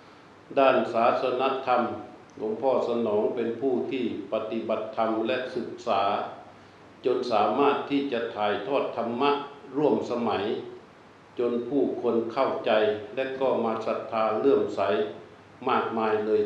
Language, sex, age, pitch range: Thai, male, 60-79, 110-130 Hz